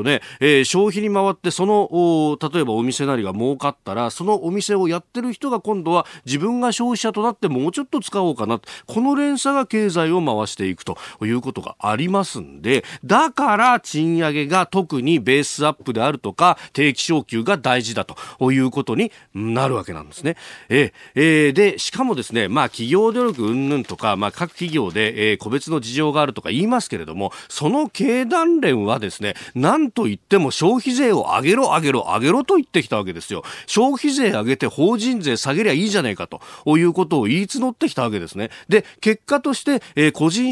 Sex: male